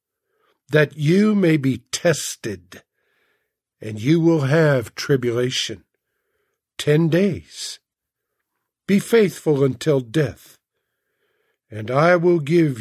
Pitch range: 135-190 Hz